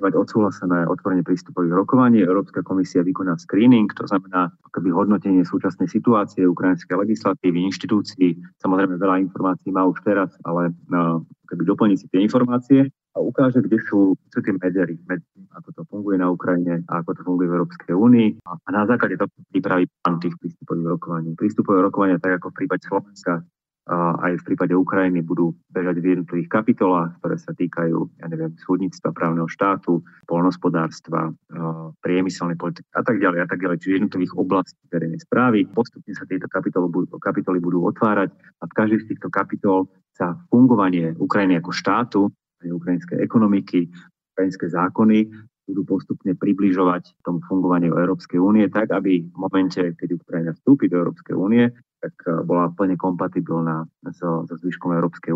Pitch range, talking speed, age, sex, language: 85-95 Hz, 160 wpm, 30-49, male, Slovak